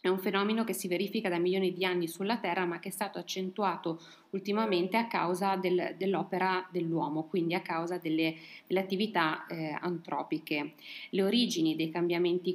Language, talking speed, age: Italian, 165 wpm, 30-49